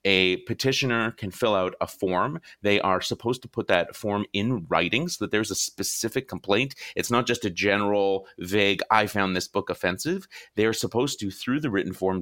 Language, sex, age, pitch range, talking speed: English, male, 30-49, 100-135 Hz, 200 wpm